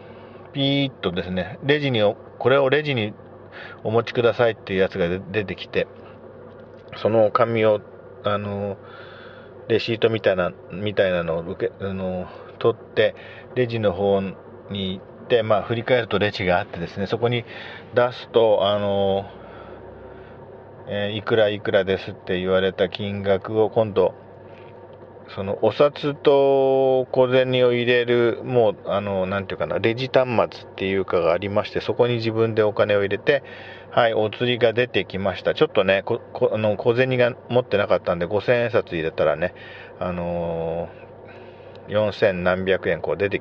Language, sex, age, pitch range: Japanese, male, 40-59, 95-125 Hz